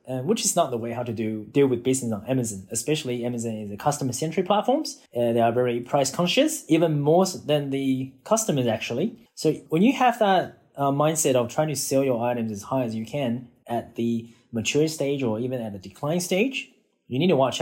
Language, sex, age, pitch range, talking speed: English, male, 20-39, 115-145 Hz, 220 wpm